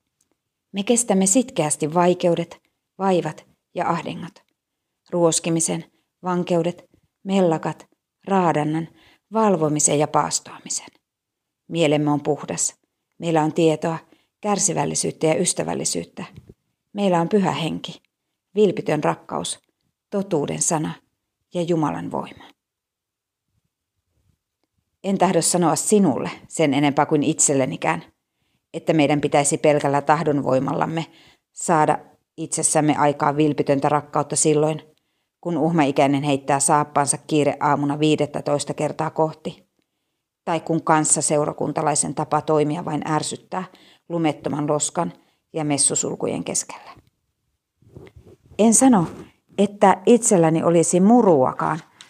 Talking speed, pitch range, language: 90 wpm, 150-180 Hz, Finnish